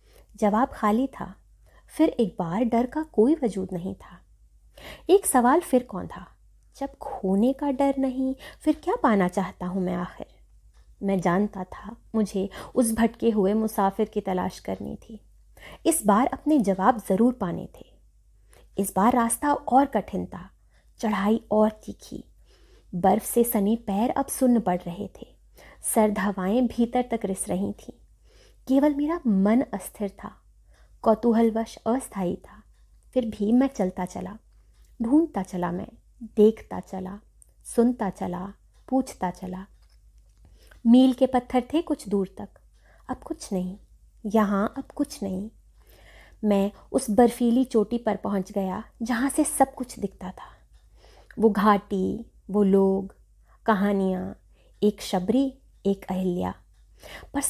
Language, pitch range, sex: Hindi, 195-255 Hz, female